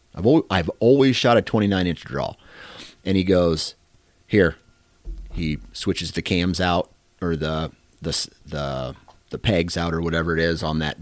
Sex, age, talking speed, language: male, 30-49, 170 wpm, English